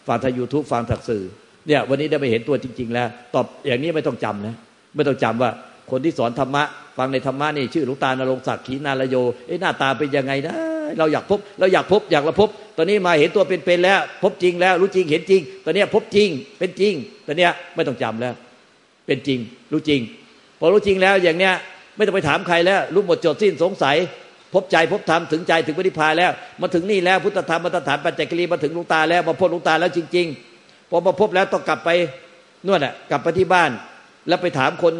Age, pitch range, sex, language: 50-69, 130-180 Hz, male, Thai